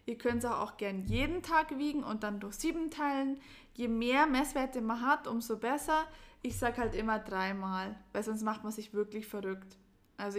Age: 20-39